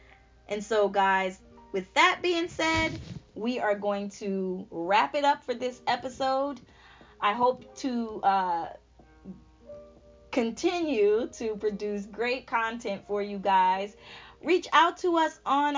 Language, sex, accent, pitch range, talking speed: English, female, American, 195-270 Hz, 130 wpm